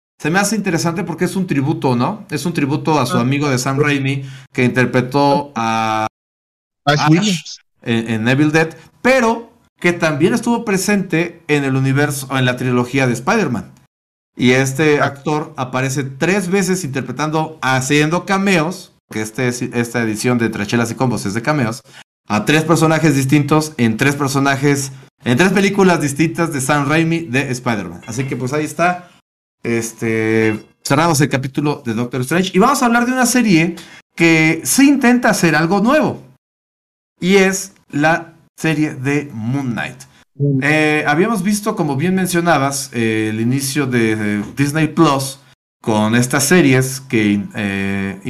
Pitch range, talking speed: 125-170 Hz, 155 wpm